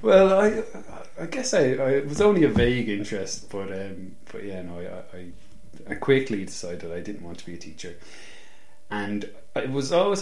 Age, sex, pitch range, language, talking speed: 30-49, male, 90-110 Hz, English, 190 wpm